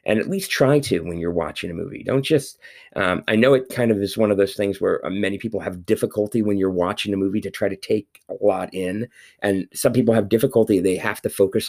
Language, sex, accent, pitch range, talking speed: English, male, American, 90-115 Hz, 245 wpm